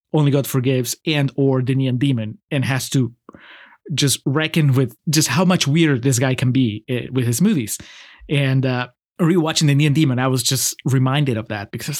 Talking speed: 195 wpm